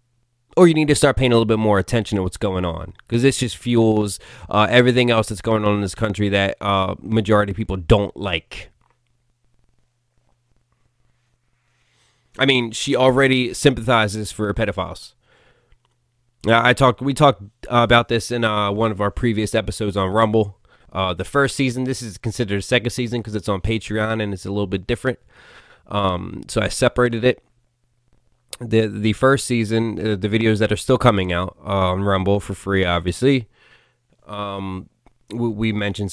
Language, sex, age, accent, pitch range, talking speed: English, male, 20-39, American, 100-120 Hz, 175 wpm